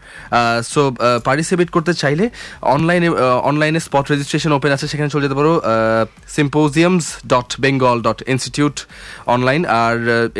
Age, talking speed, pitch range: 30-49, 150 wpm, 115-145 Hz